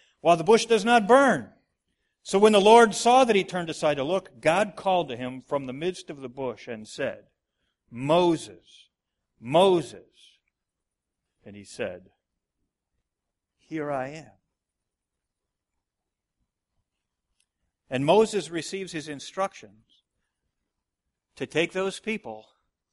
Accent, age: American, 50-69